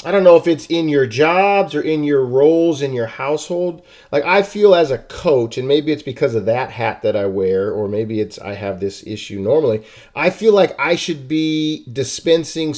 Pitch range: 125-155 Hz